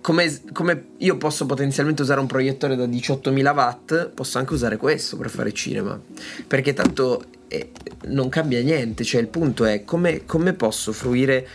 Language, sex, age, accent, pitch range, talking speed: Italian, male, 20-39, native, 115-150 Hz, 165 wpm